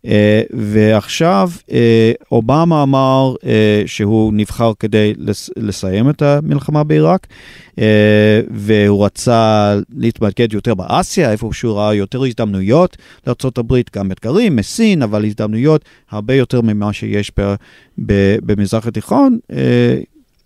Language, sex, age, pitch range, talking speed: Hebrew, male, 40-59, 110-145 Hz, 105 wpm